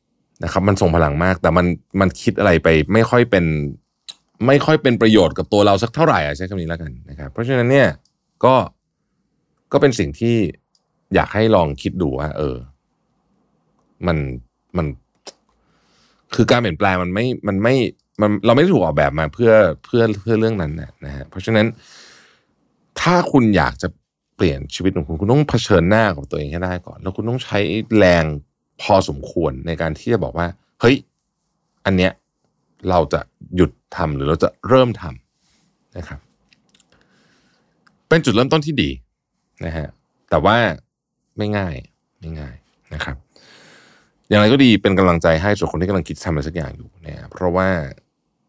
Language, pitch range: Thai, 80-115 Hz